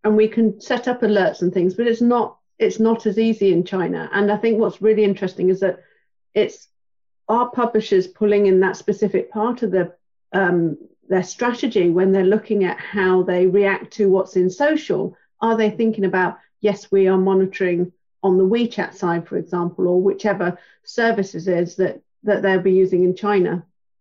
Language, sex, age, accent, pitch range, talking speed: English, female, 40-59, British, 190-225 Hz, 180 wpm